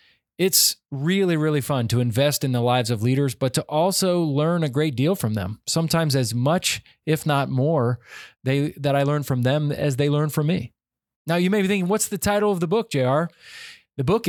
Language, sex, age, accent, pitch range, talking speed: English, male, 20-39, American, 130-175 Hz, 215 wpm